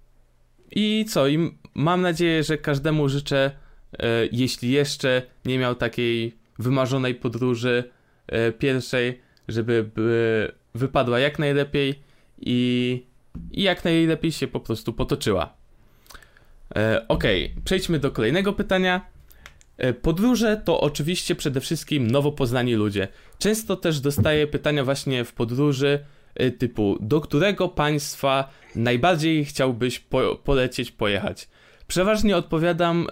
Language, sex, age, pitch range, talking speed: Polish, male, 20-39, 125-160 Hz, 115 wpm